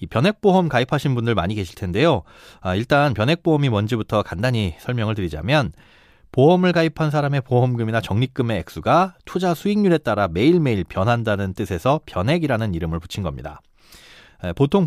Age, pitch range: 30-49, 105-155 Hz